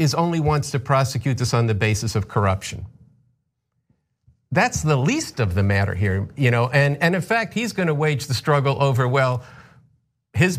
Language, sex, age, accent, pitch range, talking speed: English, male, 50-69, American, 120-155 Hz, 180 wpm